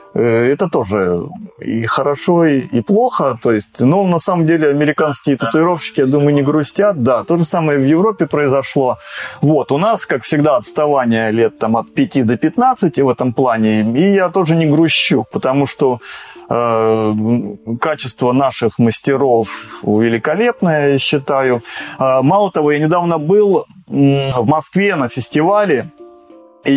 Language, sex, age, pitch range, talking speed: Russian, male, 30-49, 120-155 Hz, 140 wpm